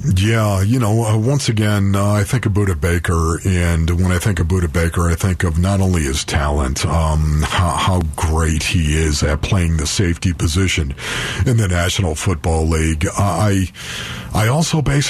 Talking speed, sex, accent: 180 wpm, male, American